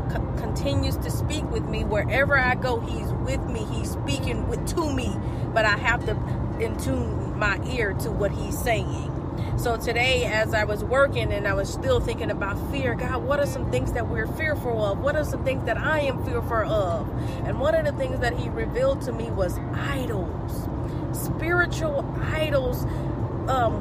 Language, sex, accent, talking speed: English, female, American, 190 wpm